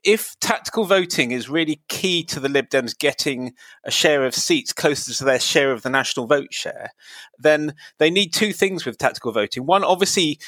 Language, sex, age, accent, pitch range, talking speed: English, male, 30-49, British, 140-185 Hz, 195 wpm